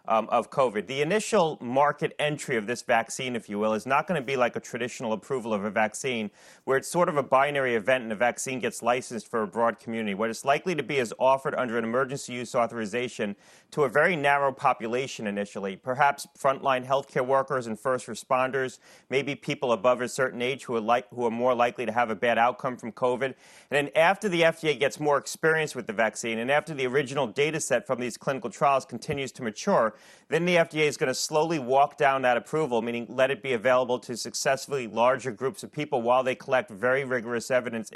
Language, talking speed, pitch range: English, 215 wpm, 120-145 Hz